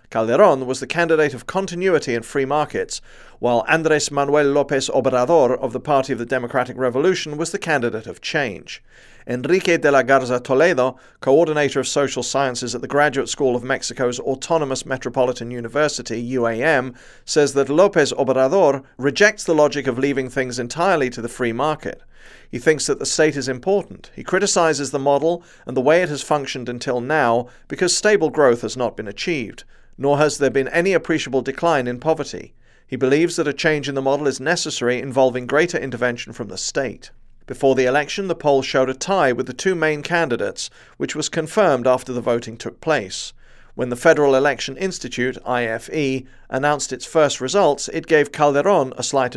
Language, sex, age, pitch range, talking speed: English, male, 40-59, 125-155 Hz, 180 wpm